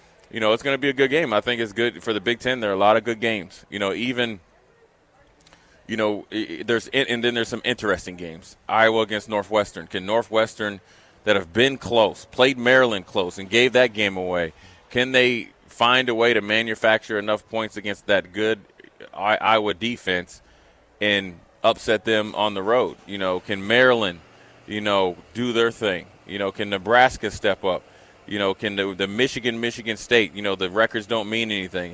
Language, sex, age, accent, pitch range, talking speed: English, male, 30-49, American, 100-115 Hz, 190 wpm